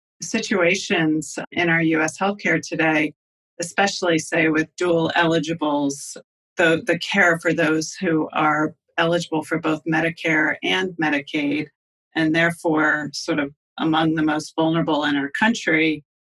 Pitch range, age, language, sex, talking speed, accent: 155-180 Hz, 40-59, English, female, 130 wpm, American